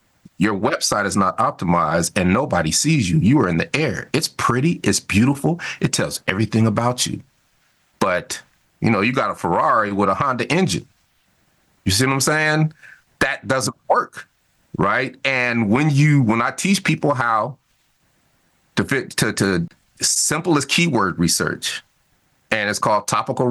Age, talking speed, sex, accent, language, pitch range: 40-59, 160 wpm, male, American, English, 110-160 Hz